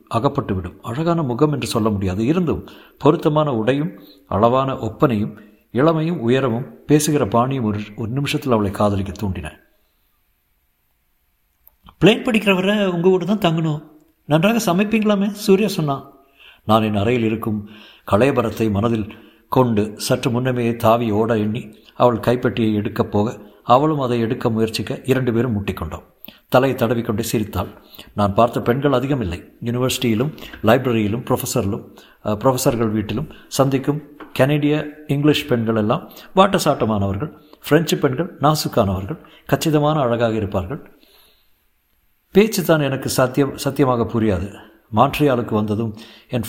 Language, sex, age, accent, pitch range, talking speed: Tamil, male, 50-69, native, 110-150 Hz, 110 wpm